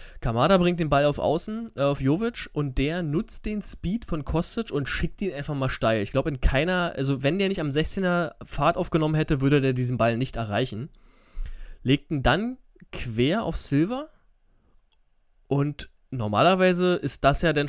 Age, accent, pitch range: 20-39, German, 135-175 Hz